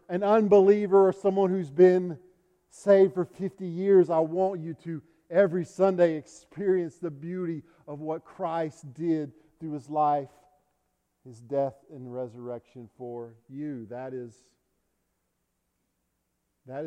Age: 50-69